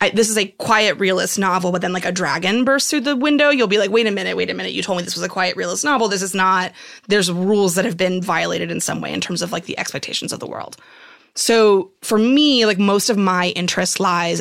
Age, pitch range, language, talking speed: 20-39, 185-230 Hz, English, 260 wpm